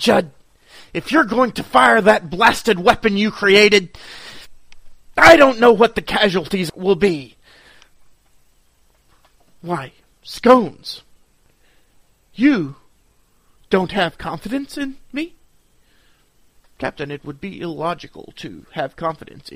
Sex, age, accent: male, 40-59, American